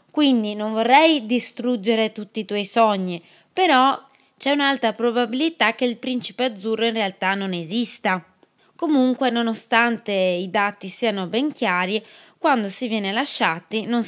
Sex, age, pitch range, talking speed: female, 20-39, 205-260 Hz, 135 wpm